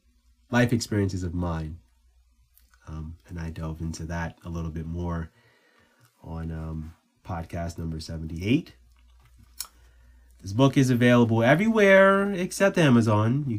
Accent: American